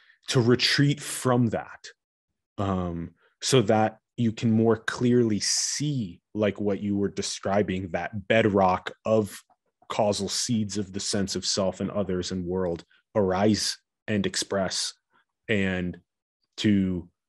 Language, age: English, 20-39